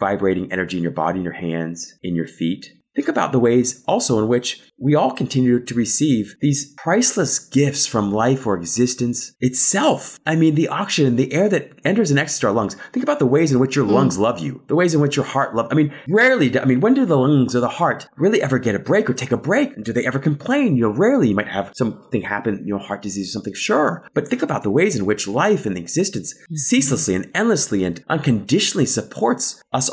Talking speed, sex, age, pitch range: 240 wpm, male, 30-49, 105-145 Hz